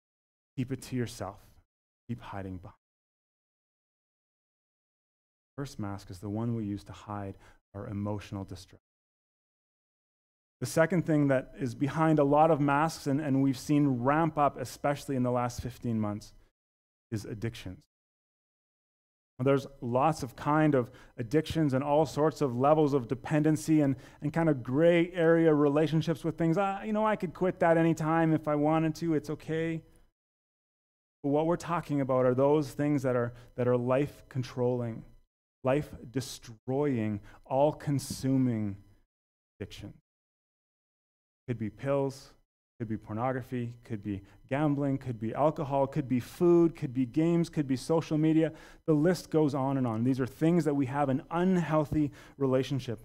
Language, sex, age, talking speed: English, male, 30-49, 150 wpm